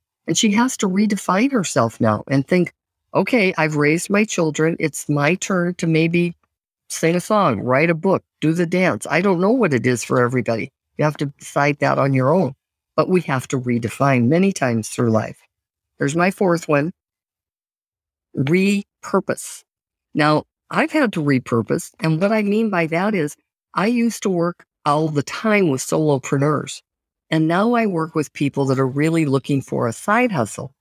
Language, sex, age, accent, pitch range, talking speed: English, female, 50-69, American, 130-185 Hz, 180 wpm